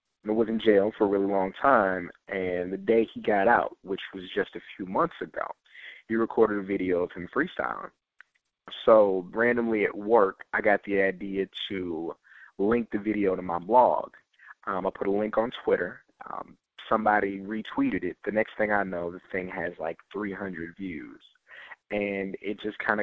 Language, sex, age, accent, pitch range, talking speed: English, male, 30-49, American, 95-110 Hz, 180 wpm